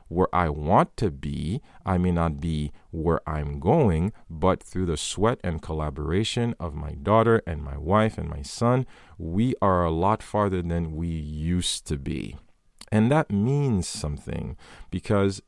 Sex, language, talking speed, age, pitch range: male, English, 165 wpm, 40-59, 80-105 Hz